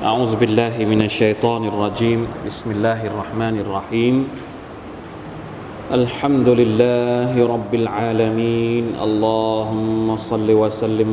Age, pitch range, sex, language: 20-39, 105-115 Hz, male, Thai